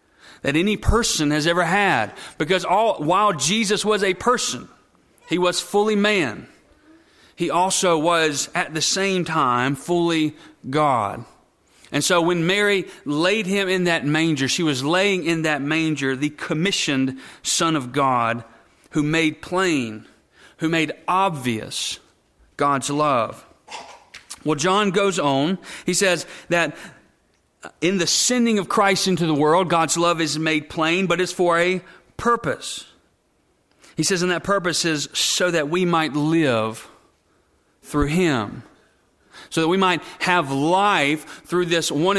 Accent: American